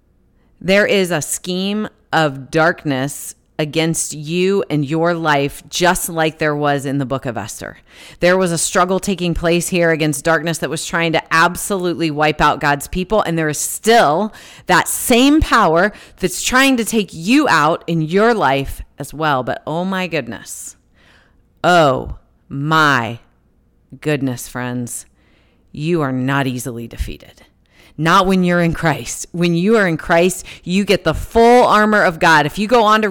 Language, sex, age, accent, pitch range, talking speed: English, female, 40-59, American, 150-215 Hz, 165 wpm